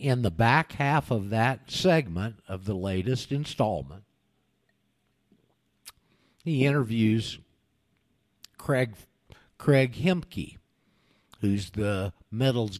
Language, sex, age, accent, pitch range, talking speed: English, male, 50-69, American, 100-125 Hz, 90 wpm